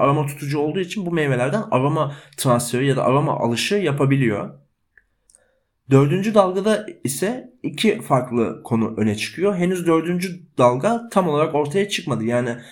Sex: male